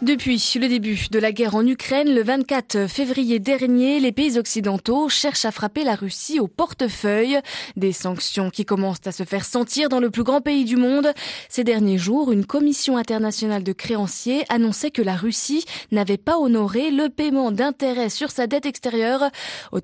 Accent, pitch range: French, 195-275 Hz